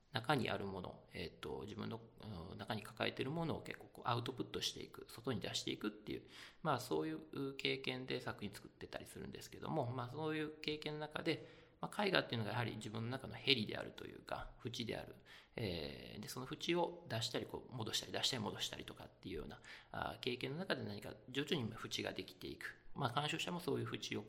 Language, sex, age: English, male, 40-59